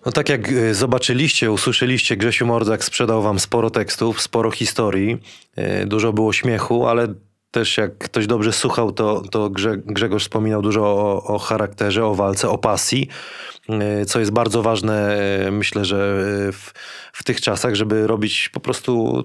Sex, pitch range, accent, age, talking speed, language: male, 105-120 Hz, native, 20-39, 150 wpm, Polish